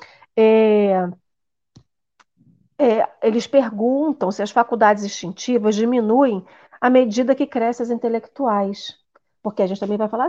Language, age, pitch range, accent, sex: Portuguese, 40-59, 220-290 Hz, Brazilian, female